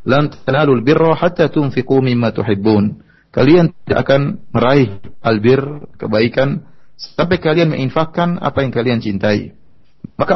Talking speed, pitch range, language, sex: 115 wpm, 120-155 Hz, Indonesian, male